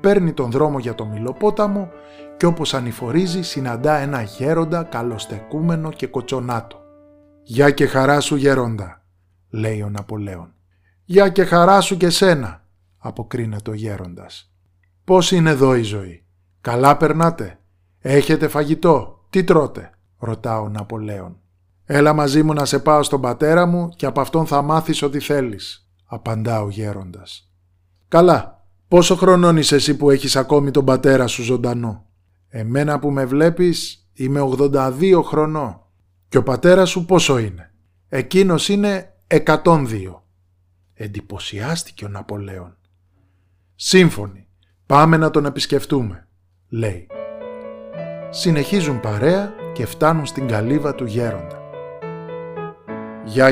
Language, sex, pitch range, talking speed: Greek, male, 100-155 Hz, 125 wpm